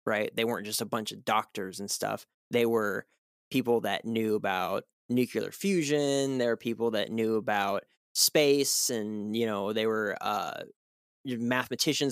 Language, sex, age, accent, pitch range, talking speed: English, male, 20-39, American, 110-130 Hz, 160 wpm